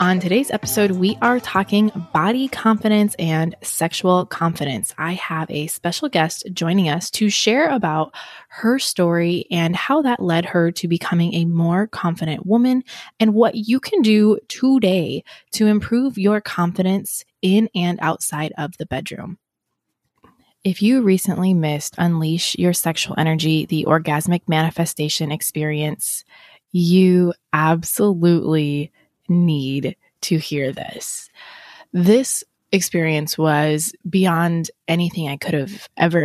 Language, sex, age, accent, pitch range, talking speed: English, female, 20-39, American, 155-200 Hz, 125 wpm